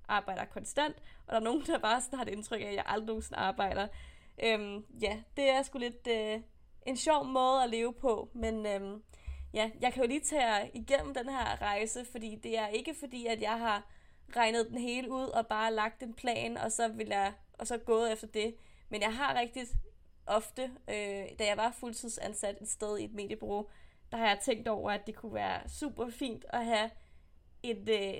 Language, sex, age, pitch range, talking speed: Danish, female, 20-39, 205-240 Hz, 210 wpm